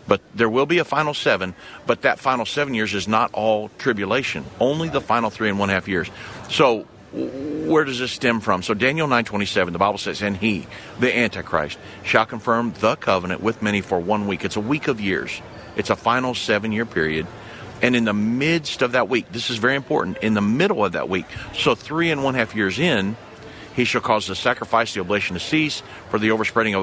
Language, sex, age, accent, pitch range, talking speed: English, male, 50-69, American, 100-120 Hz, 220 wpm